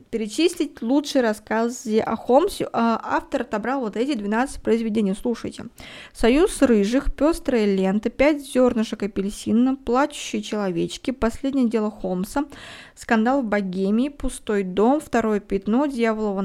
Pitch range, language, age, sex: 215-275 Hz, Russian, 20-39, female